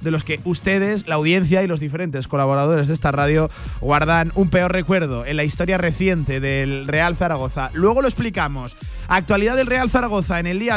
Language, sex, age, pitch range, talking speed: Spanish, male, 30-49, 165-215 Hz, 190 wpm